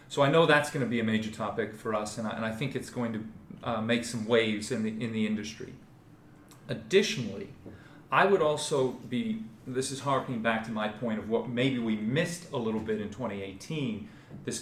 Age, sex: 30-49, male